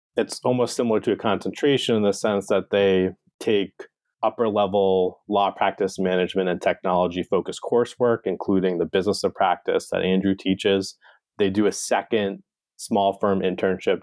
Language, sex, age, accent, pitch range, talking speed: English, male, 30-49, American, 95-105 Hz, 155 wpm